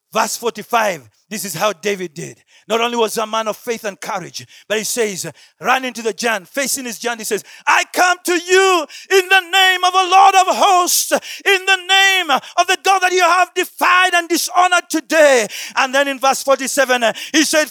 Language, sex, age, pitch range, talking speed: English, male, 40-59, 205-345 Hz, 205 wpm